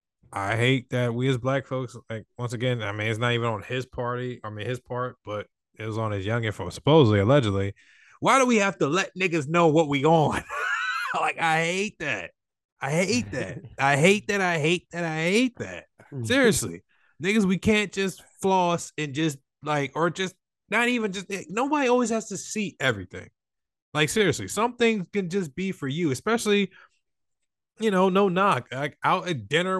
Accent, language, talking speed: American, English, 195 wpm